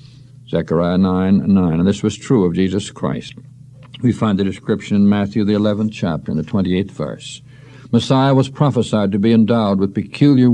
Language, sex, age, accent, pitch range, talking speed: English, male, 60-79, American, 105-135 Hz, 175 wpm